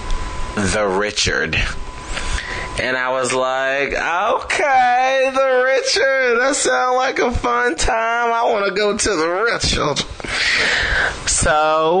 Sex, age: male, 20-39